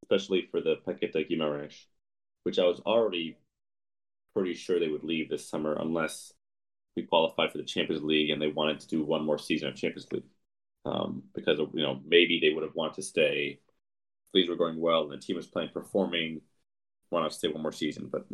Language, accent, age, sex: English, American, 30-49, male